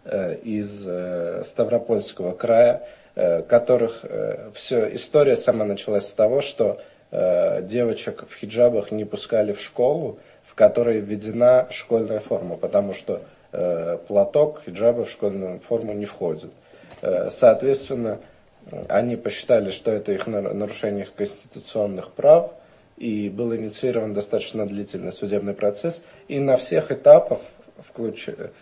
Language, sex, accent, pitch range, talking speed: Russian, male, native, 100-125 Hz, 130 wpm